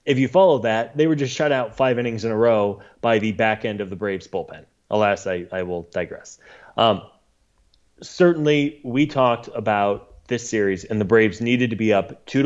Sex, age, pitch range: male, 20-39, 105-130 Hz